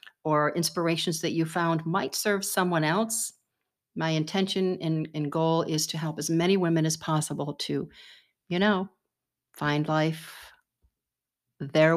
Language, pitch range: English, 165-205 Hz